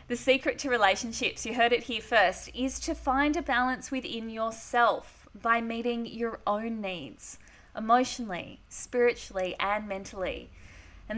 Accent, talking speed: Australian, 140 wpm